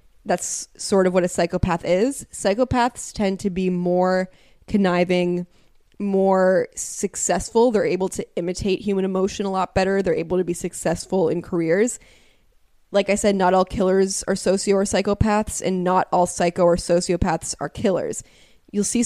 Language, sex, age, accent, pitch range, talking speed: English, female, 10-29, American, 180-195 Hz, 160 wpm